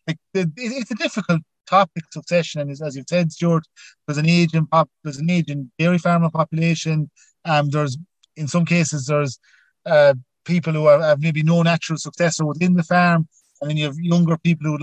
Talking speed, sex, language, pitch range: 190 wpm, male, English, 150-170 Hz